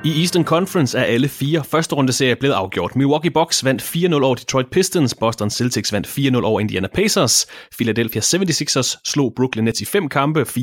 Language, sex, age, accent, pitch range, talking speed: English, male, 30-49, Danish, 120-150 Hz, 185 wpm